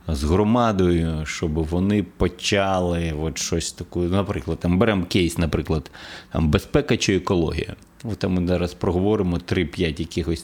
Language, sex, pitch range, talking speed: Ukrainian, male, 85-110 Hz, 140 wpm